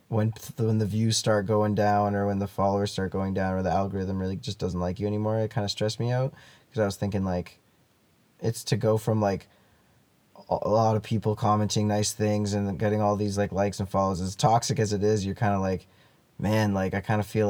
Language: English